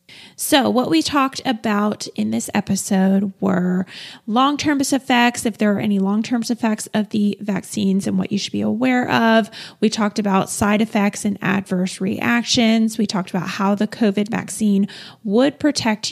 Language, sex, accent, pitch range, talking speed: English, female, American, 190-230 Hz, 165 wpm